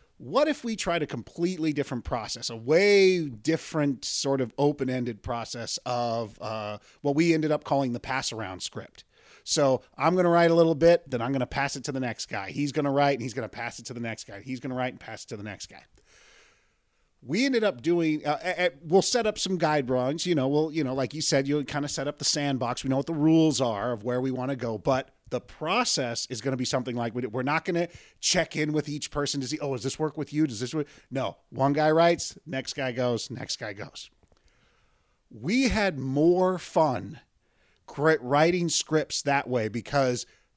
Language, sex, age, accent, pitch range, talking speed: English, male, 40-59, American, 130-165 Hz, 230 wpm